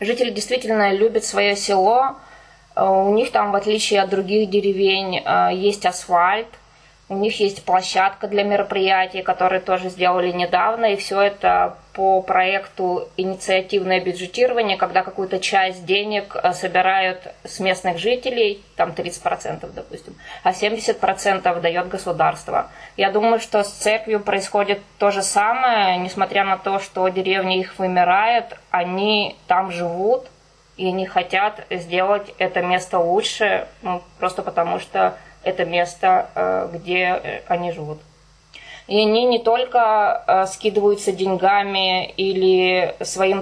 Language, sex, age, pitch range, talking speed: Russian, female, 20-39, 185-205 Hz, 125 wpm